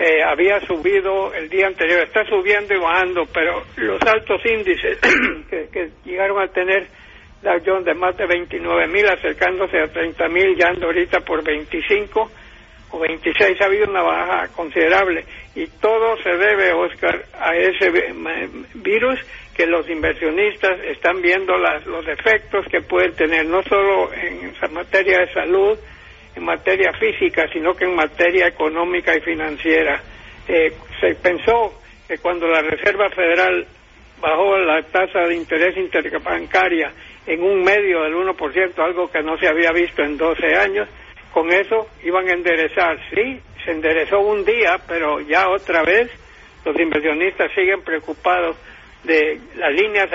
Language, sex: English, male